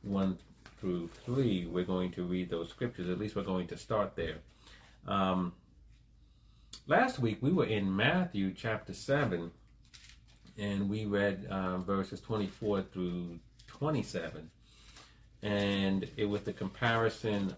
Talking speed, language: 125 wpm, English